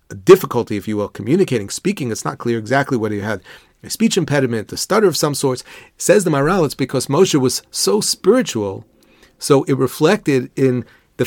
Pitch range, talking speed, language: 120-165 Hz, 190 wpm, English